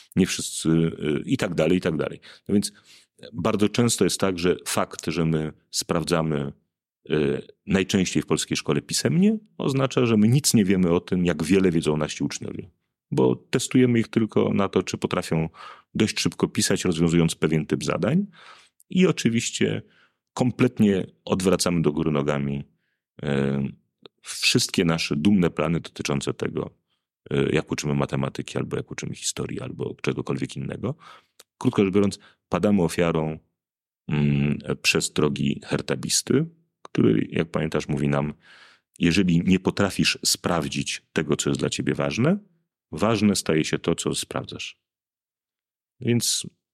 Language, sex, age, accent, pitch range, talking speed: Polish, male, 40-59, native, 75-110 Hz, 135 wpm